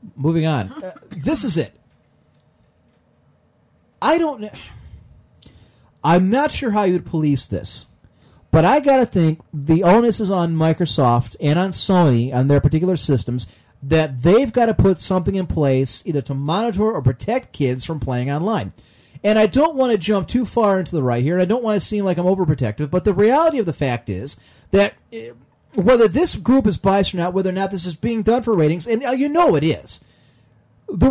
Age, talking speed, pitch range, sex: 40-59, 195 wpm, 155-230 Hz, male